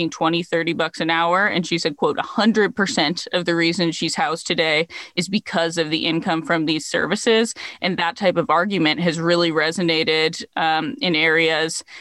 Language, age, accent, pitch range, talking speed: English, 20-39, American, 160-180 Hz, 175 wpm